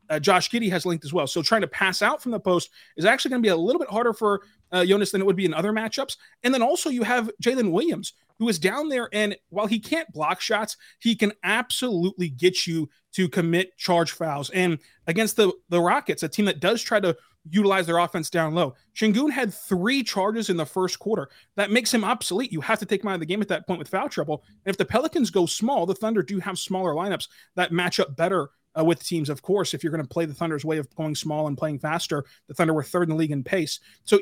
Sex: male